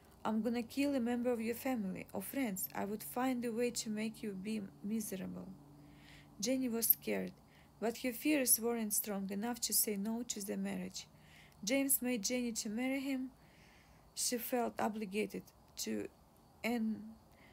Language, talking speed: English, 160 wpm